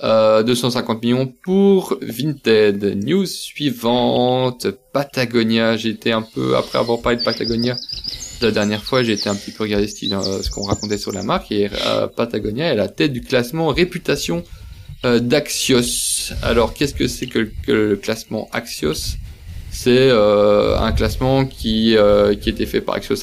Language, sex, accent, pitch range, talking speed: French, male, French, 105-130 Hz, 170 wpm